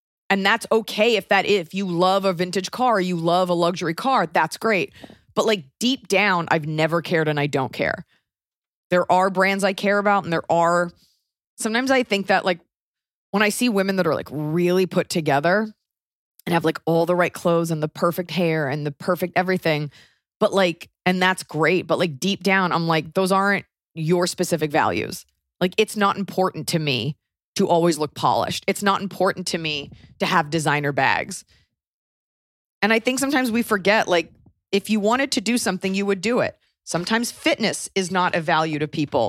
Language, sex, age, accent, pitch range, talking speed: English, female, 30-49, American, 165-200 Hz, 200 wpm